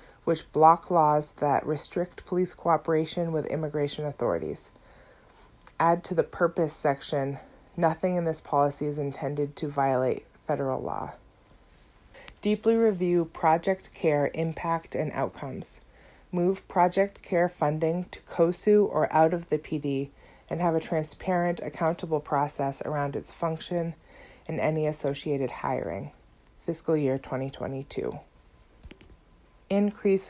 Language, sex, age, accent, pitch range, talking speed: English, female, 30-49, American, 145-175 Hz, 120 wpm